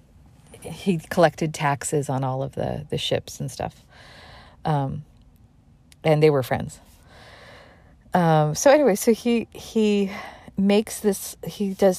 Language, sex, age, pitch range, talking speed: English, female, 40-59, 150-185 Hz, 130 wpm